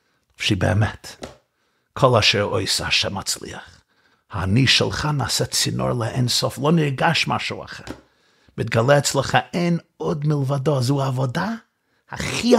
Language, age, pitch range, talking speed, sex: Hebrew, 50-69, 125-195 Hz, 115 wpm, male